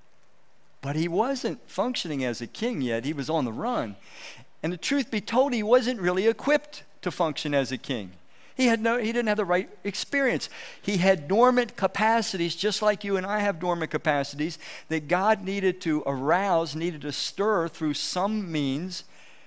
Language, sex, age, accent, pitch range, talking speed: English, male, 50-69, American, 130-195 Hz, 180 wpm